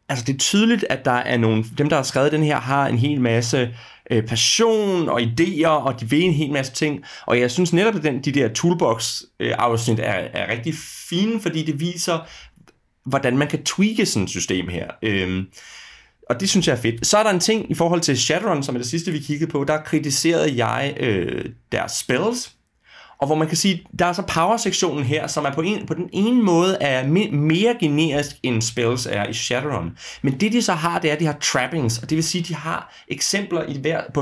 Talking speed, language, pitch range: 235 wpm, Danish, 125-170 Hz